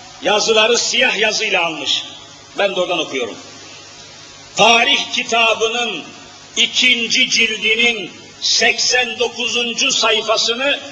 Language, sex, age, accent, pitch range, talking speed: Turkish, male, 50-69, native, 205-250 Hz, 75 wpm